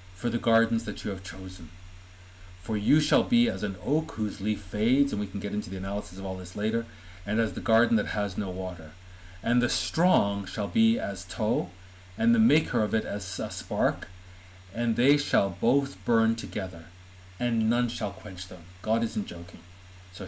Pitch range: 90-115 Hz